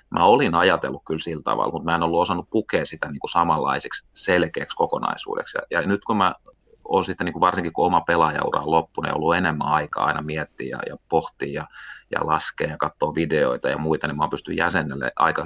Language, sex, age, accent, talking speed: Finnish, male, 30-49, native, 200 wpm